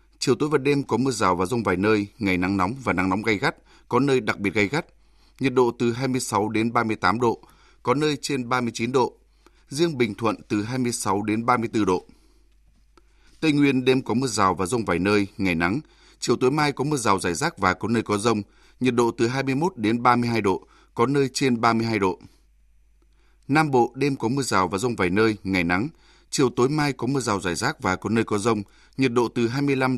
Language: Vietnamese